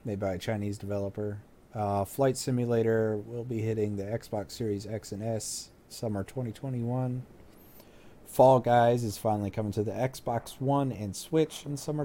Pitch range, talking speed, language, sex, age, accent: 105-130 Hz, 160 wpm, English, male, 30-49, American